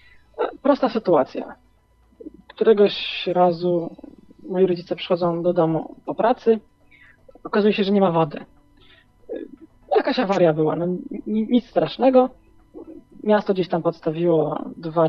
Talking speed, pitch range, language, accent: 110 wpm, 165-210 Hz, Polish, native